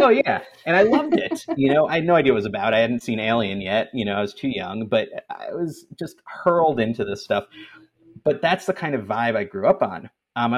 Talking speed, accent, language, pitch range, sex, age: 265 wpm, American, English, 110-155 Hz, male, 30-49